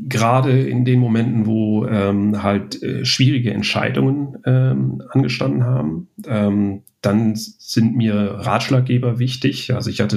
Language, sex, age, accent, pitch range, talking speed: German, male, 40-59, German, 105-125 Hz, 130 wpm